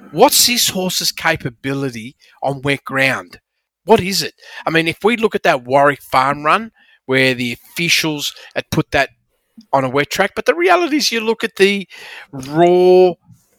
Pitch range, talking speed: 130-190 Hz, 170 wpm